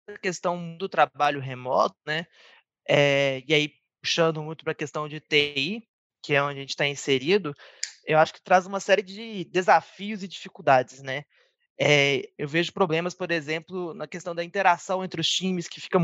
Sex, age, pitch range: male, 20-39, 145-180 Hz